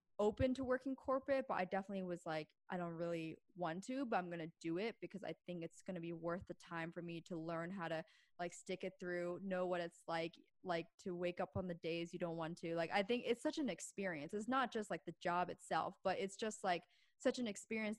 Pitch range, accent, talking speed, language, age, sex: 175-210 Hz, American, 255 wpm, English, 20-39, female